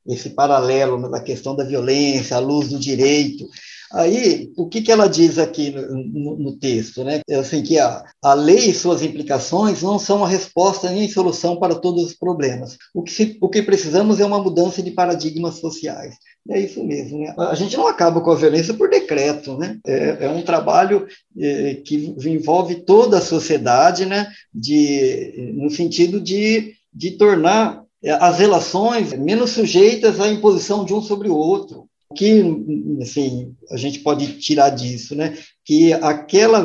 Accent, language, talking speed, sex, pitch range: Brazilian, Portuguese, 180 wpm, male, 140-190 Hz